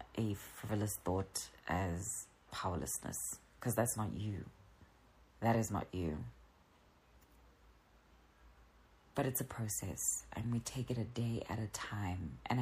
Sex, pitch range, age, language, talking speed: female, 75-125 Hz, 30-49, English, 130 wpm